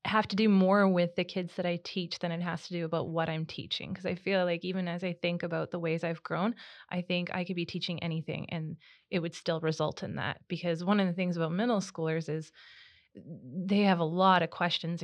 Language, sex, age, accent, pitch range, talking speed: English, female, 20-39, American, 170-195 Hz, 245 wpm